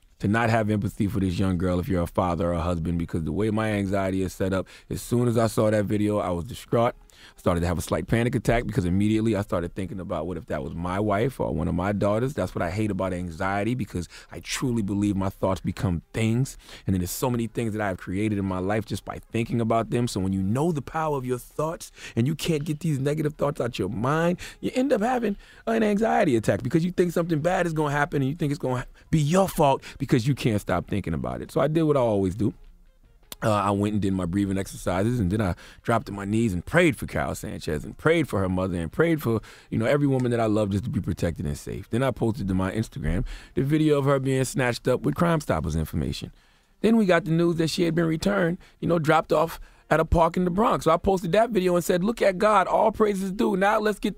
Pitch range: 95-160 Hz